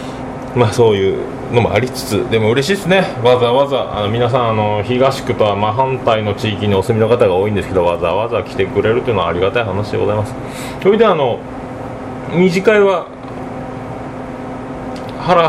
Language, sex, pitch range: Japanese, male, 105-130 Hz